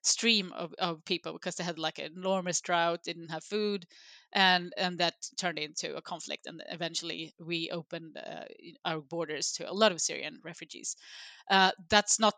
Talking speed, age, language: 180 wpm, 20-39, English